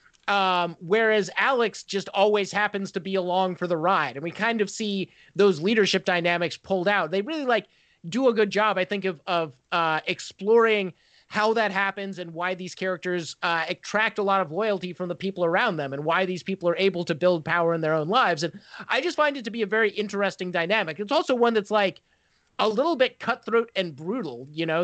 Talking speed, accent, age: 215 wpm, American, 30-49